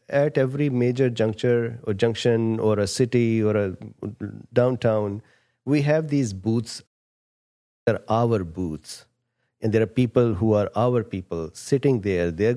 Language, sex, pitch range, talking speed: English, male, 105-125 Hz, 150 wpm